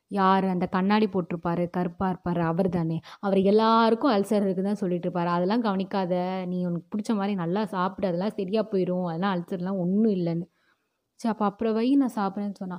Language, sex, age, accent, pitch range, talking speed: Tamil, female, 20-39, native, 195-235 Hz, 170 wpm